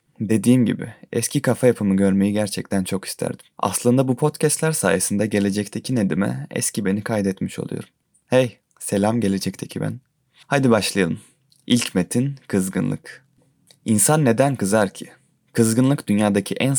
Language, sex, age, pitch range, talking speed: Turkish, male, 20-39, 100-125 Hz, 125 wpm